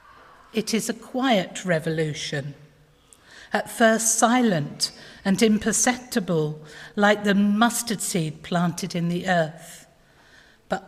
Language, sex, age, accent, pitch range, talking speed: English, female, 50-69, British, 175-230 Hz, 105 wpm